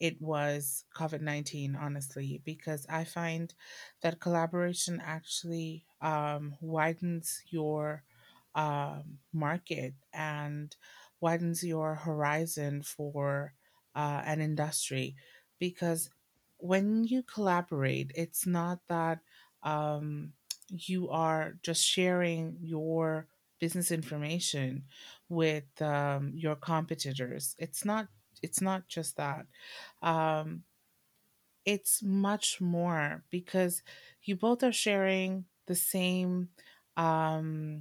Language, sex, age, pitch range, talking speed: English, female, 30-49, 150-175 Hz, 95 wpm